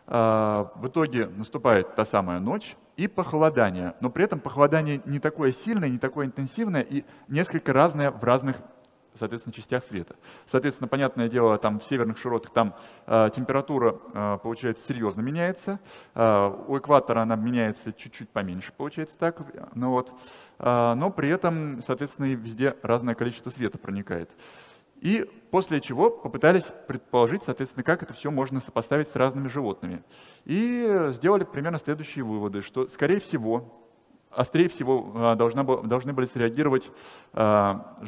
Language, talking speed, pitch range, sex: Russian, 135 wpm, 115-145 Hz, male